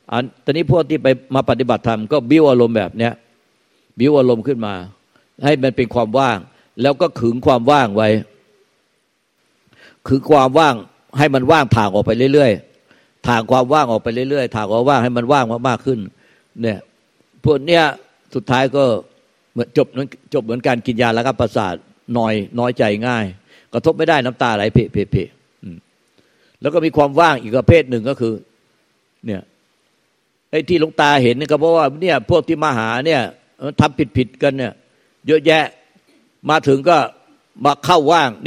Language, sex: Thai, male